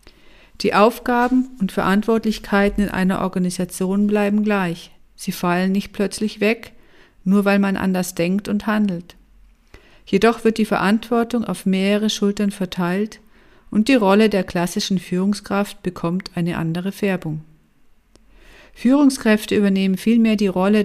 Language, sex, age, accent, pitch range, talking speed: English, female, 50-69, German, 185-215 Hz, 125 wpm